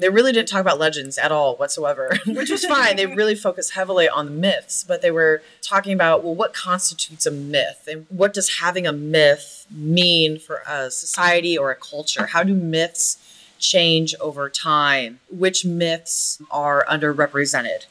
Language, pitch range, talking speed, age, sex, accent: English, 145-180 Hz, 175 wpm, 20-39, female, American